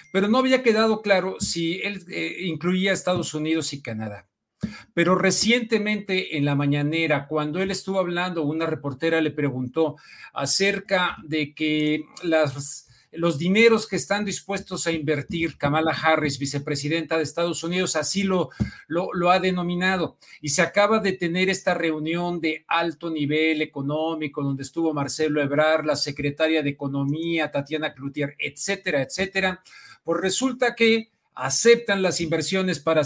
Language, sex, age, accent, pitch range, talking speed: Spanish, male, 50-69, Mexican, 155-190 Hz, 145 wpm